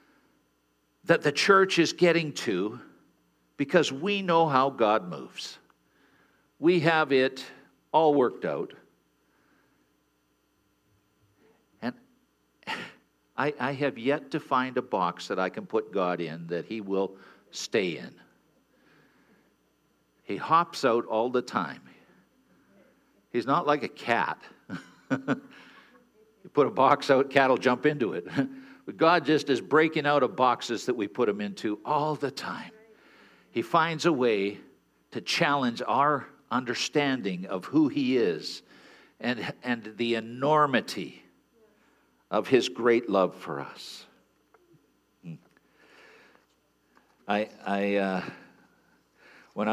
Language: English